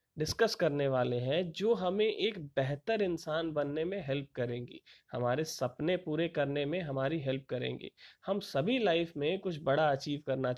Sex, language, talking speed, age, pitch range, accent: male, Hindi, 165 wpm, 30-49, 135-180 Hz, native